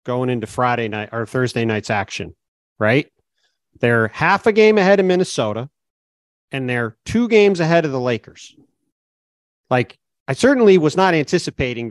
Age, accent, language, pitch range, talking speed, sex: 40-59, American, English, 115-170 Hz, 150 wpm, male